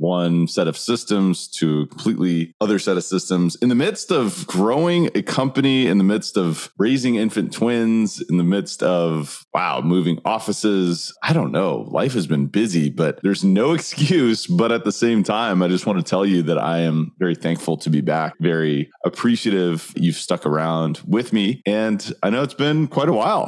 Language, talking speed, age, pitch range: English, 195 wpm, 30-49, 80-110 Hz